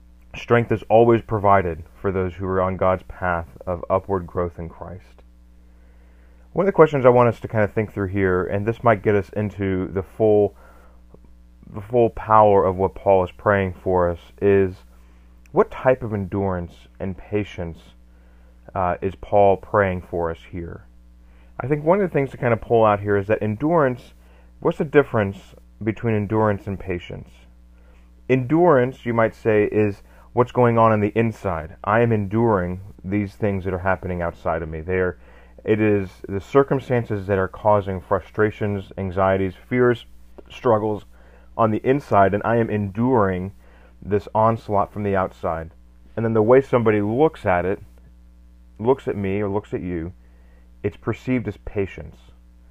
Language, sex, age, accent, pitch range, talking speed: English, male, 30-49, American, 80-110 Hz, 165 wpm